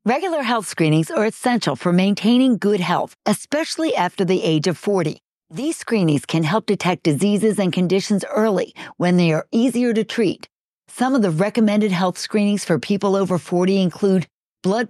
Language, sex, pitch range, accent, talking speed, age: English, female, 180-240 Hz, American, 170 wpm, 50-69